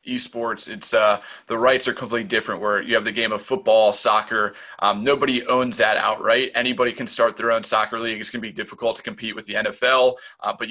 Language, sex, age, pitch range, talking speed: English, male, 20-39, 110-140 Hz, 220 wpm